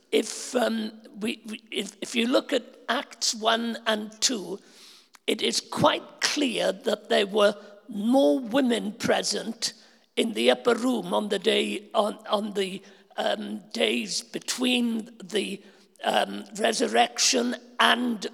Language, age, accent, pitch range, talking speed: English, 50-69, British, 215-255 Hz, 130 wpm